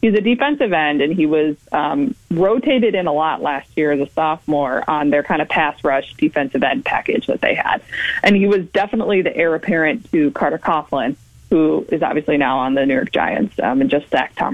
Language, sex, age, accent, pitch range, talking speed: English, female, 20-39, American, 155-220 Hz, 220 wpm